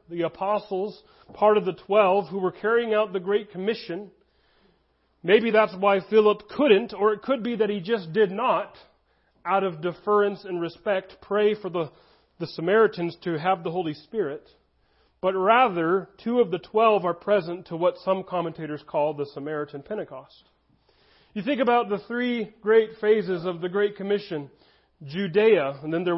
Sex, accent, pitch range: male, American, 170-210 Hz